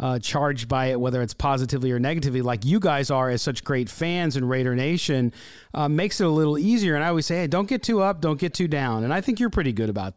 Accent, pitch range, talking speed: American, 130-165 Hz, 270 wpm